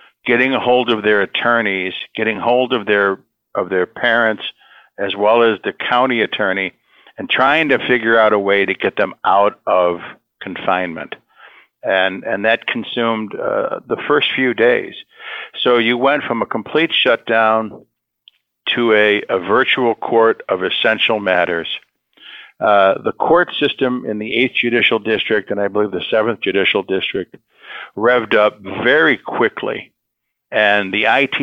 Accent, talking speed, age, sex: American, 150 wpm, 60-79, male